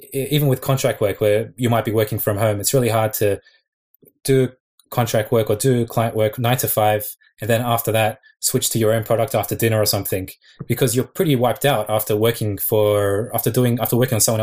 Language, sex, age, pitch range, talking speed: English, male, 20-39, 110-125 Hz, 215 wpm